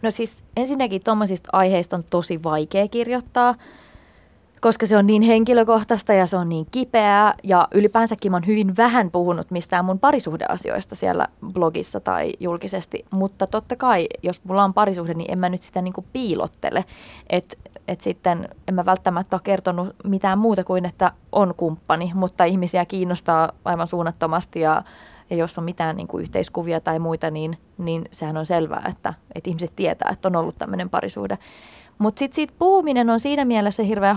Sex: female